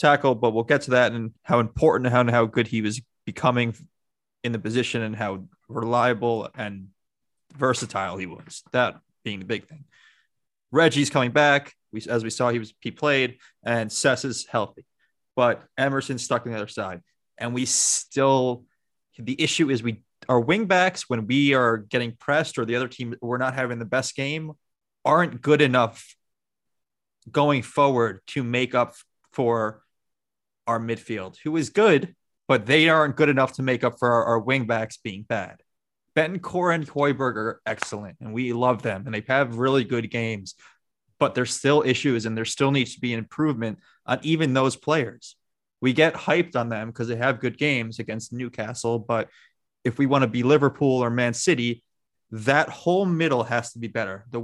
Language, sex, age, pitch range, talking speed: English, male, 20-39, 115-140 Hz, 185 wpm